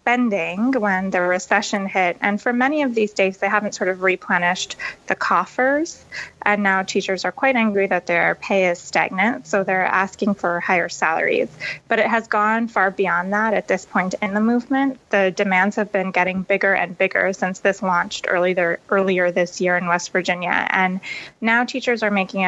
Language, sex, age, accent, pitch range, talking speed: English, female, 20-39, American, 185-215 Hz, 190 wpm